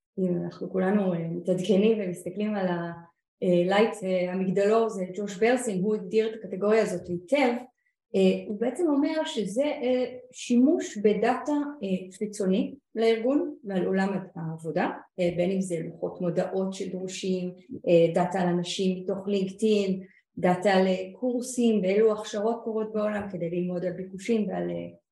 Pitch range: 185-245 Hz